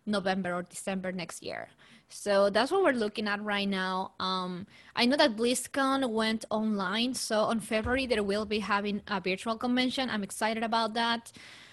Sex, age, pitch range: female, 20-39, 200-235 Hz